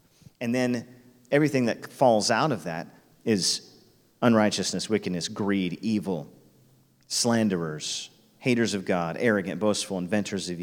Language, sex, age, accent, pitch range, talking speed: English, male, 40-59, American, 105-135 Hz, 120 wpm